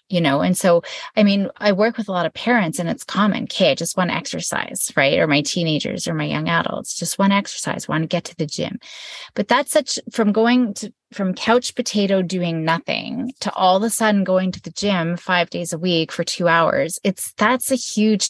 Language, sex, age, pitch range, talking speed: English, female, 30-49, 175-225 Hz, 235 wpm